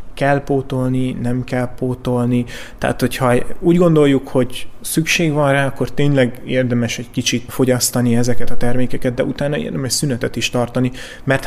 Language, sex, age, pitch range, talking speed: Hungarian, male, 30-49, 120-135 Hz, 150 wpm